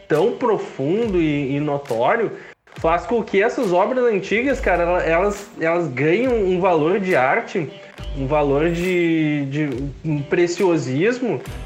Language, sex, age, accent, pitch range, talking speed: Portuguese, male, 20-39, Brazilian, 140-190 Hz, 130 wpm